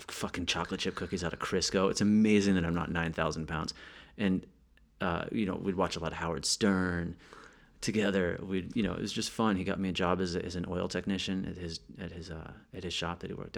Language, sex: English, male